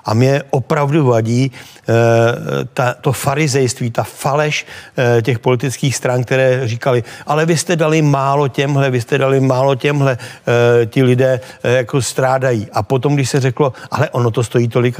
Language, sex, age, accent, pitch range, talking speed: Czech, male, 60-79, native, 115-130 Hz, 170 wpm